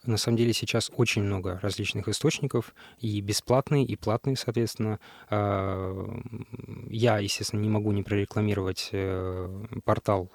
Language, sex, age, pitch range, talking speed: Russian, male, 20-39, 100-120 Hz, 115 wpm